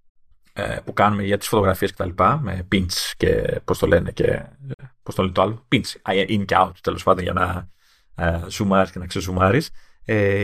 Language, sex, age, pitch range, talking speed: Greek, male, 30-49, 100-140 Hz, 160 wpm